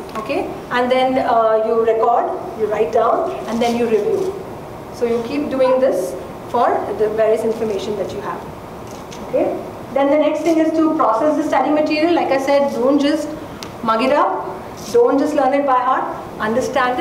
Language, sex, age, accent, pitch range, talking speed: English, female, 40-59, Indian, 230-290 Hz, 180 wpm